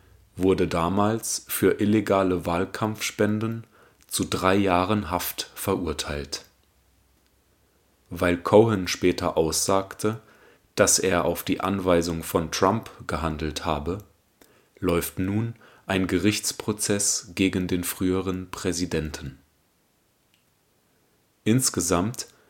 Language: German